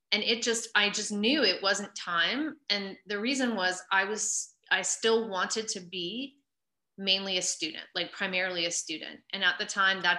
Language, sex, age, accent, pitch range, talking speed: English, female, 20-39, American, 180-225 Hz, 190 wpm